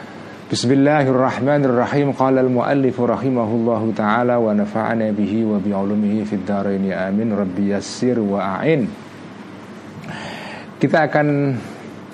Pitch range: 105-135 Hz